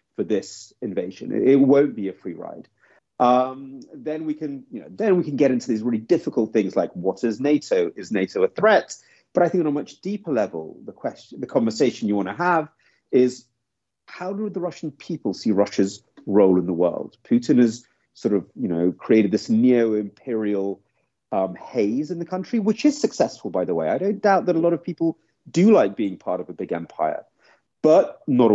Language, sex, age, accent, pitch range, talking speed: English, male, 40-59, British, 120-195 Hz, 205 wpm